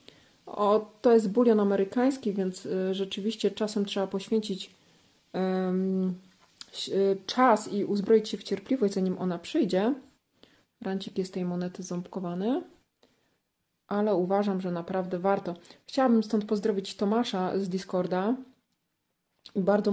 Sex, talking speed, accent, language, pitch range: female, 110 wpm, native, Polish, 190-225 Hz